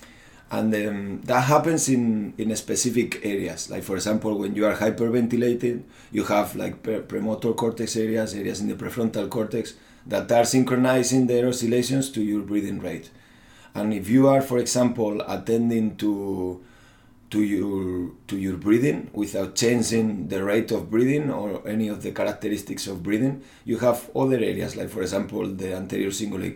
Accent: Spanish